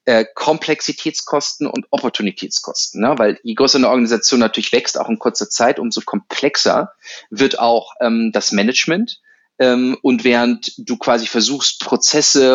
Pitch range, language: 115-140 Hz, German